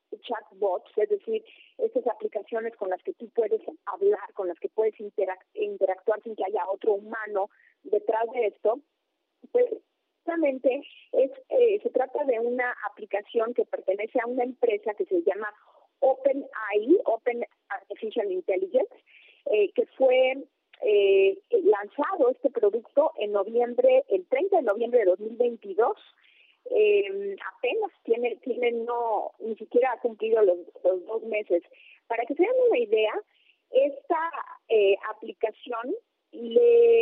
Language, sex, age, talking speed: Spanish, female, 30-49, 135 wpm